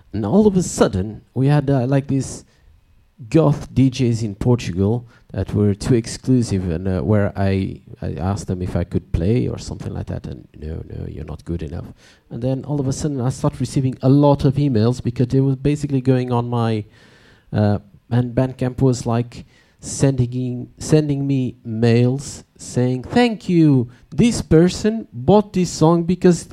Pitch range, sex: 115-145 Hz, male